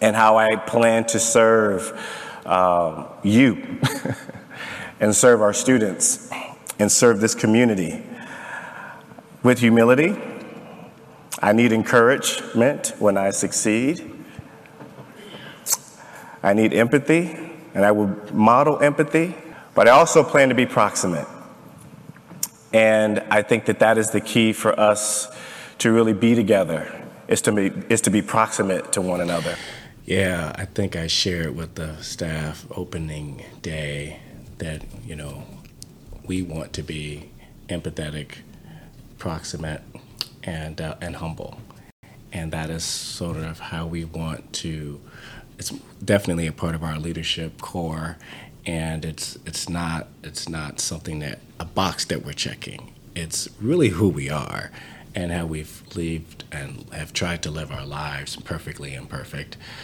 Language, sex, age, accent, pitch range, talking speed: English, male, 40-59, American, 80-110 Hz, 130 wpm